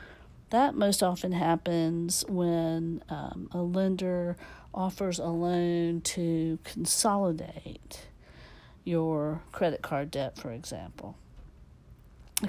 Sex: female